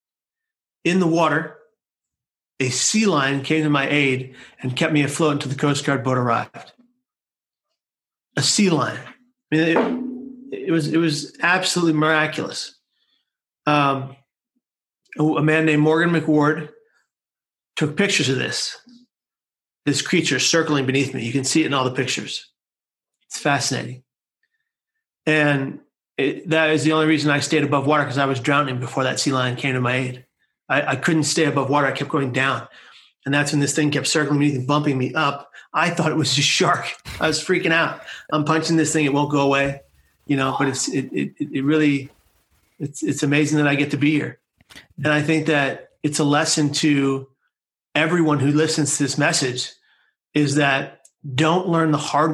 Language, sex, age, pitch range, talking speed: English, male, 40-59, 140-160 Hz, 180 wpm